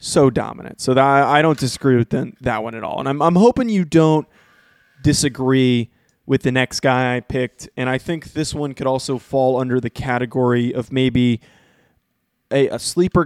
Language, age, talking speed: English, 20-39, 175 wpm